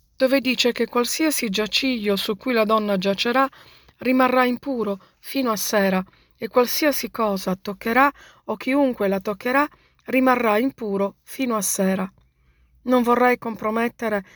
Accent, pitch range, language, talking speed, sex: native, 200-245 Hz, Italian, 130 wpm, female